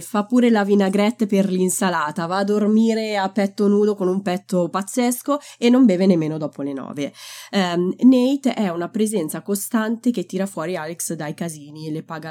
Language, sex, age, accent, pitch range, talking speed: Italian, female, 20-39, native, 165-215 Hz, 180 wpm